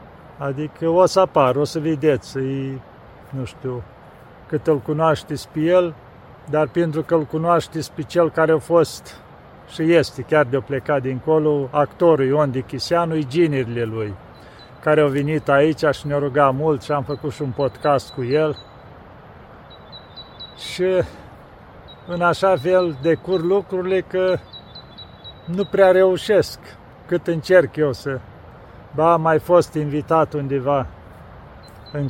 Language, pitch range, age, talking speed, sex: Romanian, 130-165 Hz, 50-69, 135 wpm, male